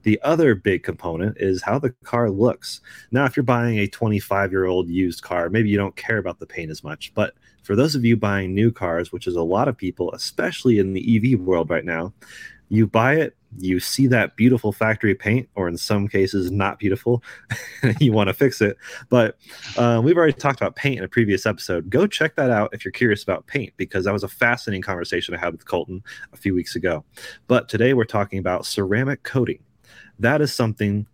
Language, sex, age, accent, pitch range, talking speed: English, male, 30-49, American, 95-115 Hz, 215 wpm